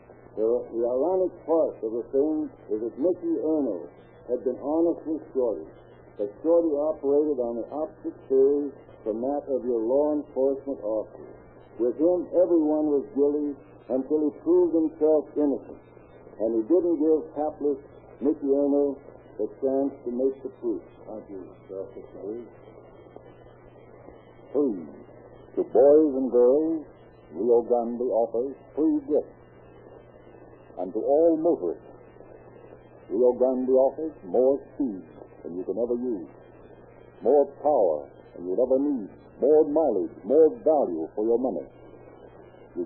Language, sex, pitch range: English, male, 120-160 Hz